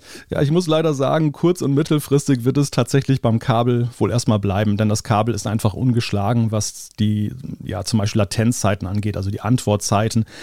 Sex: male